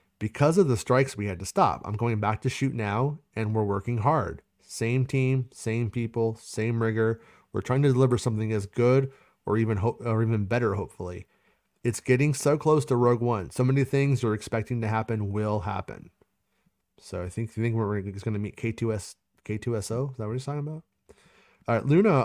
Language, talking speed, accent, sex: English, 195 wpm, American, male